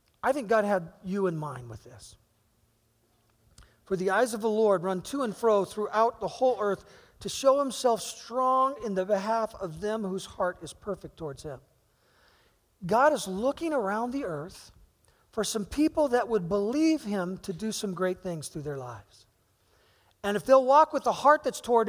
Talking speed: 185 wpm